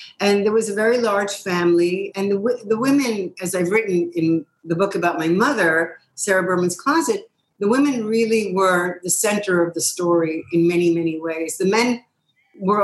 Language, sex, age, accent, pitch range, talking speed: English, female, 50-69, American, 170-210 Hz, 185 wpm